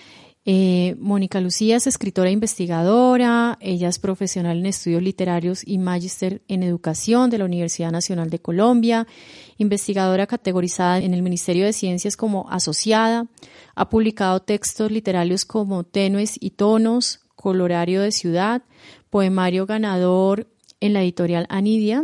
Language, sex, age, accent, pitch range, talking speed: Spanish, female, 30-49, Colombian, 185-225 Hz, 135 wpm